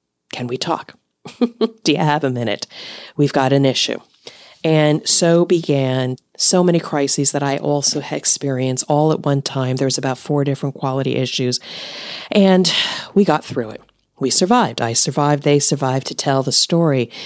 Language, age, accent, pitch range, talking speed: English, 40-59, American, 135-170 Hz, 165 wpm